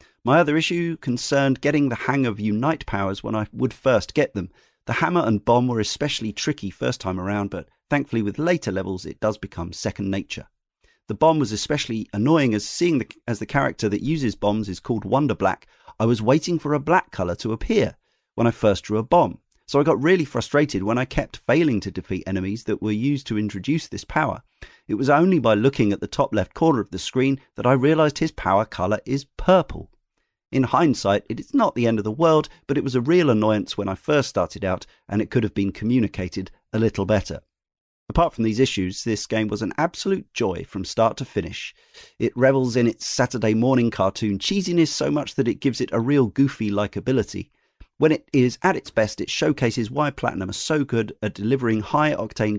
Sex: male